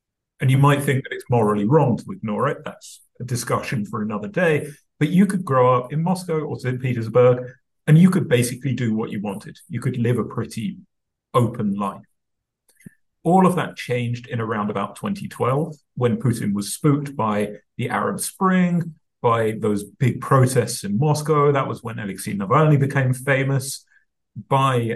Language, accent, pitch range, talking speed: Polish, British, 115-155 Hz, 175 wpm